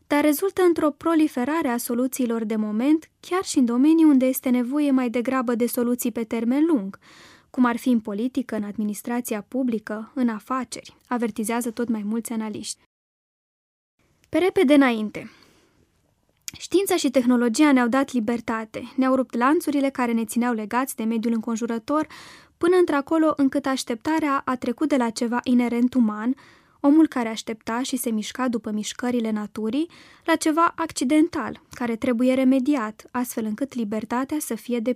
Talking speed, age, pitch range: 150 wpm, 20-39, 235-290 Hz